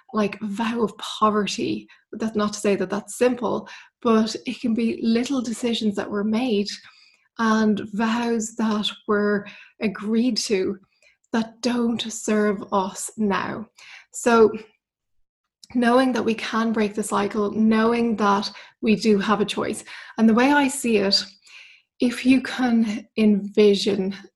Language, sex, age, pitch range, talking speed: English, female, 20-39, 205-230 Hz, 140 wpm